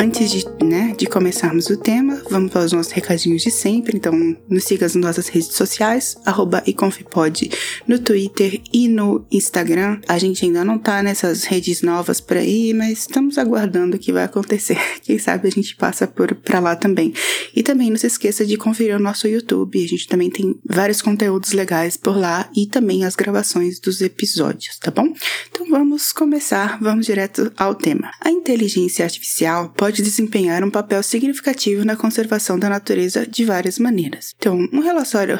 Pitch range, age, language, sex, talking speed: 185-235 Hz, 20-39, Portuguese, female, 180 wpm